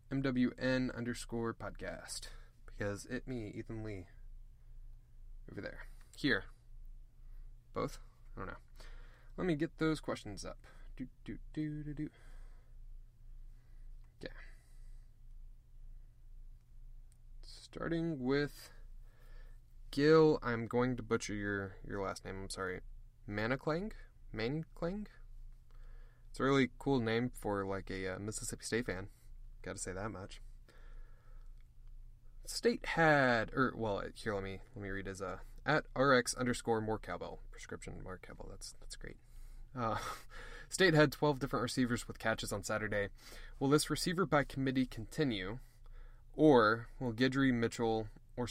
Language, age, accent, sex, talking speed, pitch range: English, 20-39, American, male, 130 wpm, 110-125 Hz